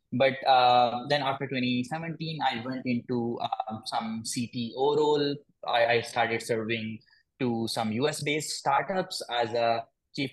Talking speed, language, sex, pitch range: 135 wpm, English, male, 120-145 Hz